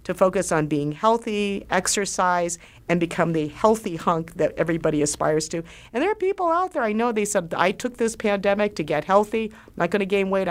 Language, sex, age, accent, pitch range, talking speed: English, female, 50-69, American, 165-205 Hz, 210 wpm